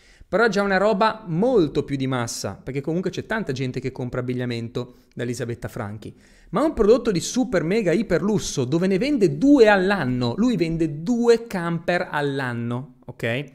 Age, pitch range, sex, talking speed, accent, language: 30-49, 125-190 Hz, male, 175 wpm, native, Italian